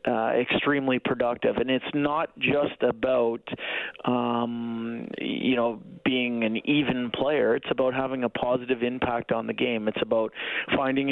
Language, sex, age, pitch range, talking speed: English, male, 40-59, 120-135 Hz, 145 wpm